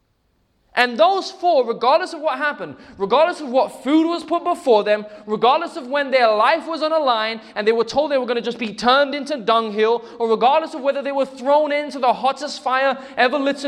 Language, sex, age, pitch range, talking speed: English, male, 20-39, 205-285 Hz, 220 wpm